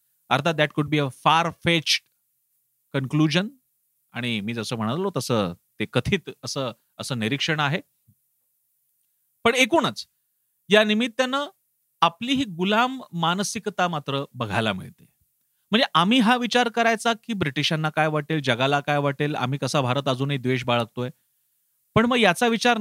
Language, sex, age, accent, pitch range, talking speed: Marathi, male, 40-59, native, 135-185 Hz, 80 wpm